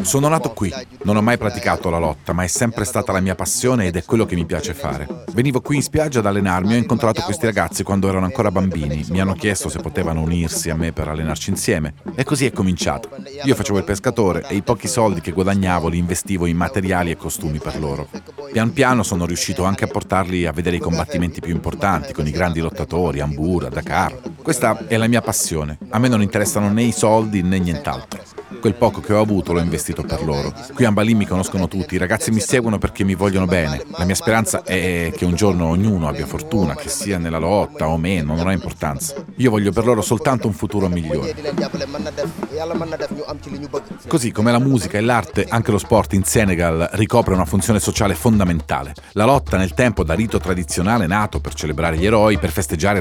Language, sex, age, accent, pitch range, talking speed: Italian, male, 40-59, native, 85-110 Hz, 205 wpm